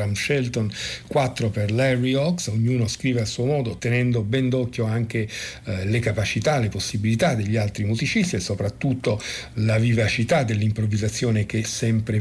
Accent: native